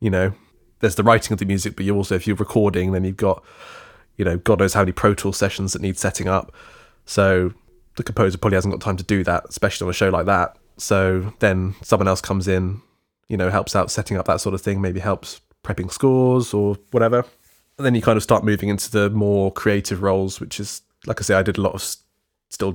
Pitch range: 95-110 Hz